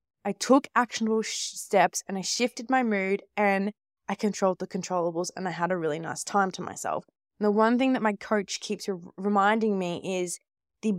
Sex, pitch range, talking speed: female, 180-215 Hz, 185 wpm